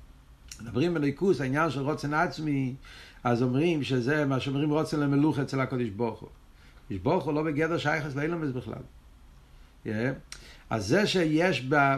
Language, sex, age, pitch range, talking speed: Hebrew, male, 60-79, 135-210 Hz, 140 wpm